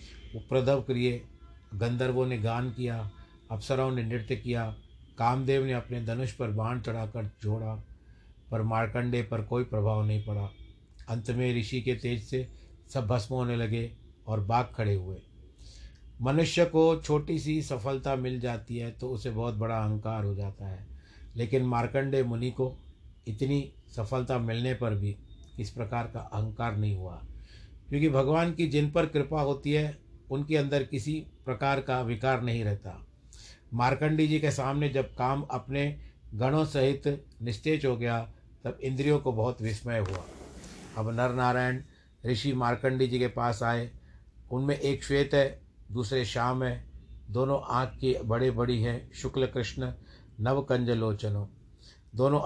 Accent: native